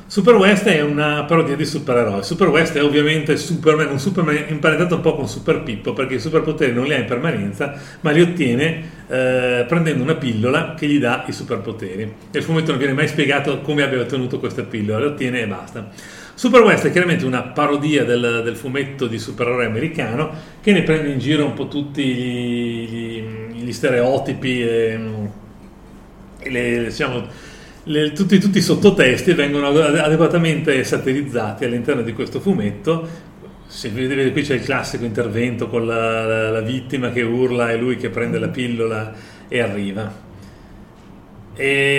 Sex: male